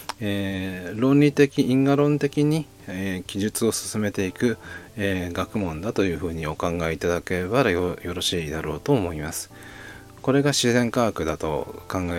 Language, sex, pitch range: Japanese, male, 85-120 Hz